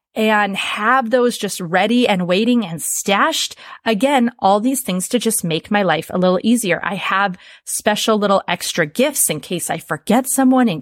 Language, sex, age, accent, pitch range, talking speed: English, female, 30-49, American, 190-250 Hz, 185 wpm